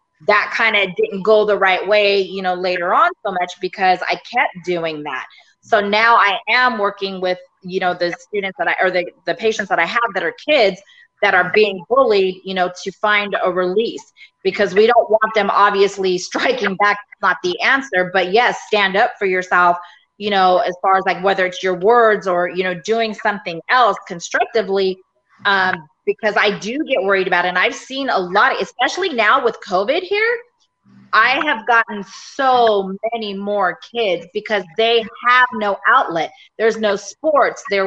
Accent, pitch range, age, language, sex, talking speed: American, 185-225 Hz, 30-49, English, female, 190 wpm